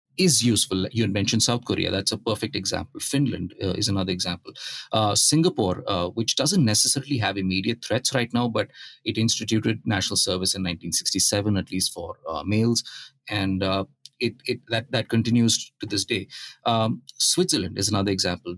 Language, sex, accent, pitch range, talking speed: English, male, Indian, 95-120 Hz, 170 wpm